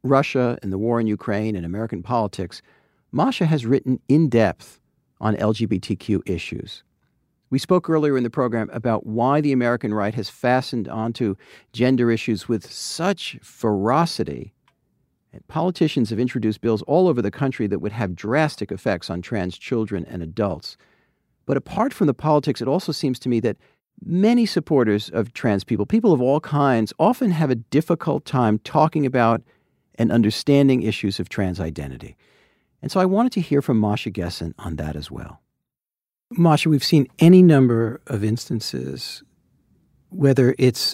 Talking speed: 160 wpm